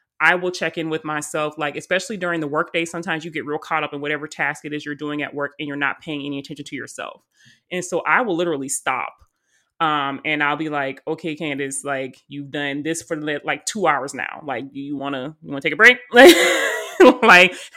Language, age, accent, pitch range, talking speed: English, 30-49, American, 150-170 Hz, 225 wpm